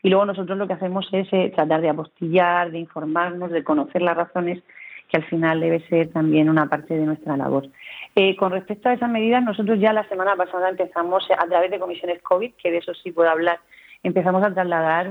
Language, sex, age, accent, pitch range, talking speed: Spanish, female, 40-59, Spanish, 165-195 Hz, 220 wpm